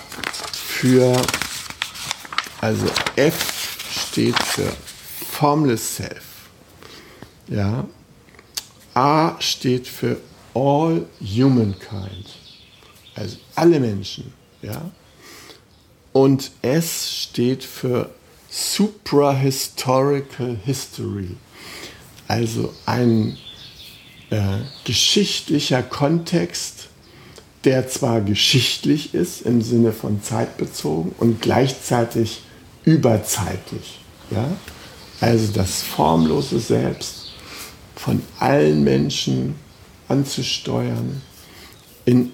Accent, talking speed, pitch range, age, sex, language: German, 65 wpm, 105-135 Hz, 60-79, male, German